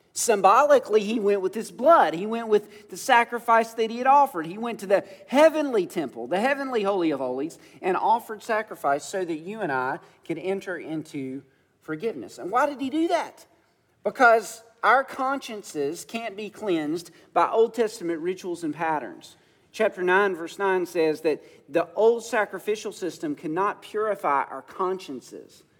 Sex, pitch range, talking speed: male, 175-255 Hz, 165 wpm